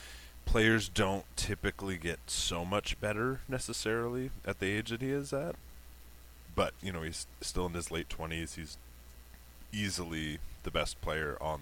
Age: 30-49